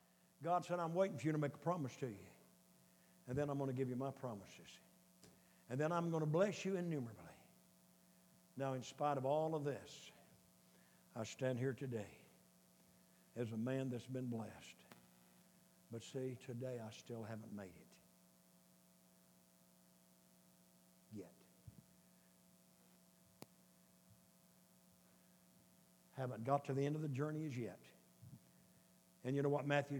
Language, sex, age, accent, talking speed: English, male, 60-79, American, 140 wpm